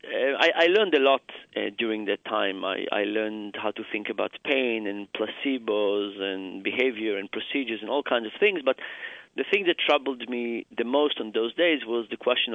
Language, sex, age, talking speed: English, male, 40-59, 205 wpm